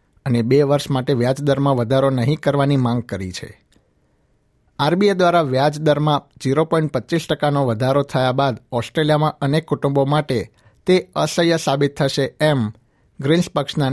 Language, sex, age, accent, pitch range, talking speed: Gujarati, male, 60-79, native, 130-150 Hz, 140 wpm